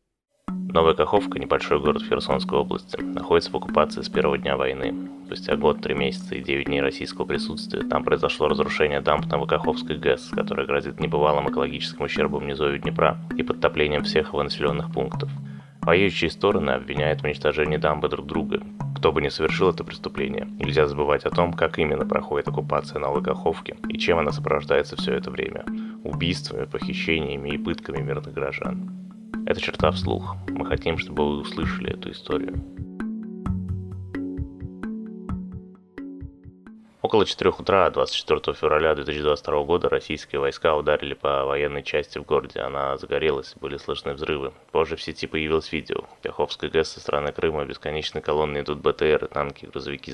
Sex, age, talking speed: male, 20-39, 150 wpm